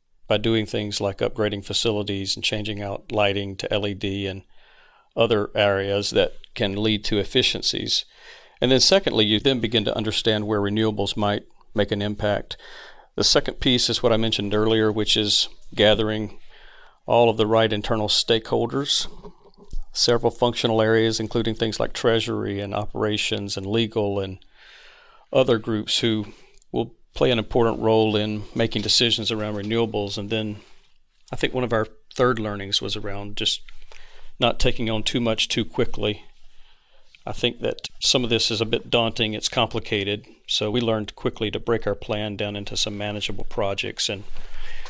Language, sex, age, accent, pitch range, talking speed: English, male, 50-69, American, 105-115 Hz, 160 wpm